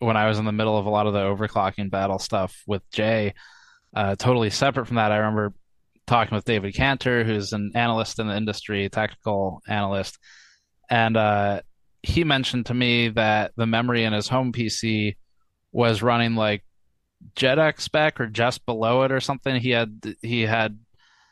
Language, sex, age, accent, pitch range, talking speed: English, male, 20-39, American, 105-125 Hz, 175 wpm